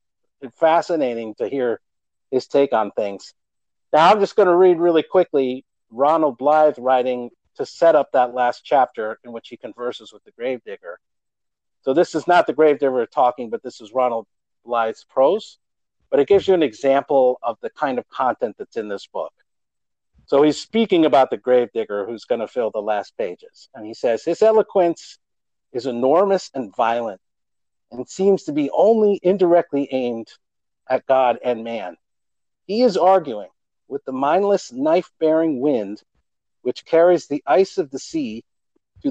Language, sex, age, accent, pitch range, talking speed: English, male, 50-69, American, 125-185 Hz, 165 wpm